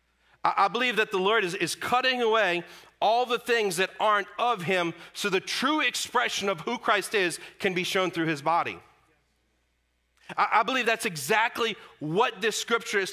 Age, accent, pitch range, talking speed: 40-59, American, 185-230 Hz, 180 wpm